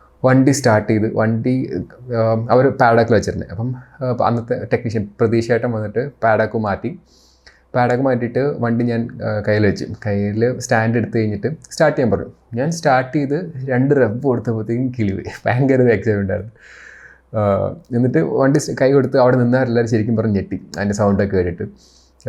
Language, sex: Malayalam, male